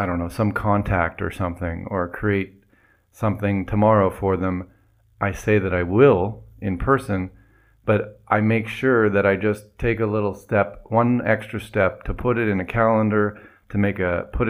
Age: 40-59